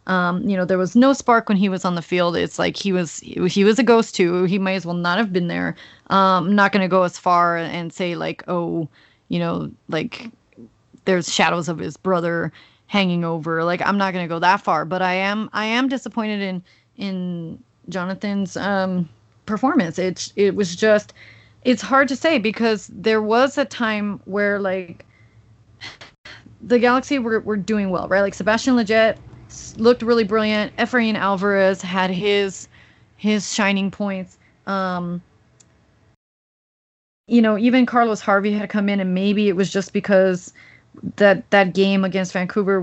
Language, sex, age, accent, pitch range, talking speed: English, female, 30-49, American, 180-215 Hz, 170 wpm